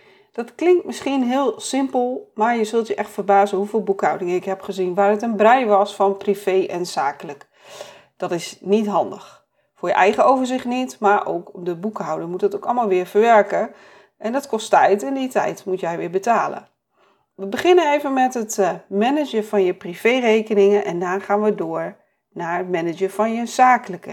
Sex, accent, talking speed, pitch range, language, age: female, Dutch, 190 wpm, 195-265 Hz, Dutch, 40-59